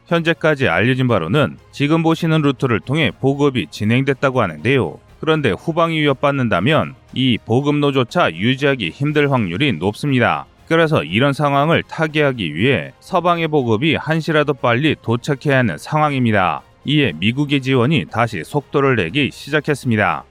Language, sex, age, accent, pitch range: Korean, male, 30-49, native, 125-155 Hz